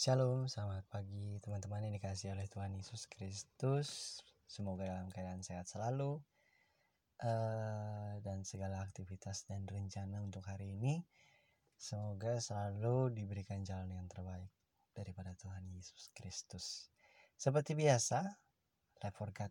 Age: 20-39